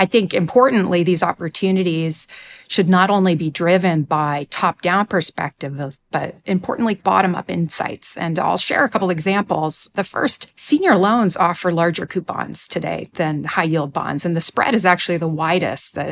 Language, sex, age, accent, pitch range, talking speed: English, female, 30-49, American, 160-200 Hz, 155 wpm